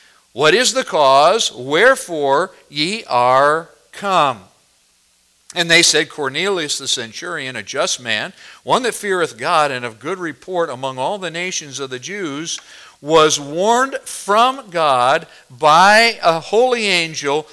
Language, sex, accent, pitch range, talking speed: English, male, American, 130-200 Hz, 135 wpm